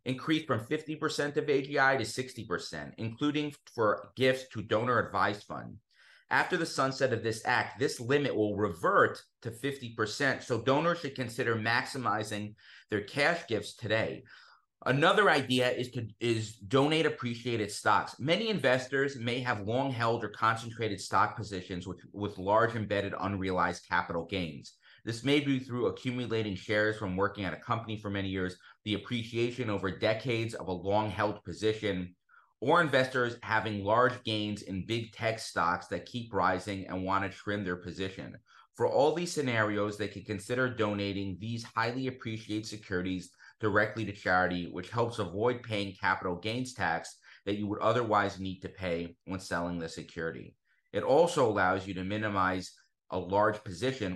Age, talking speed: 30-49, 155 wpm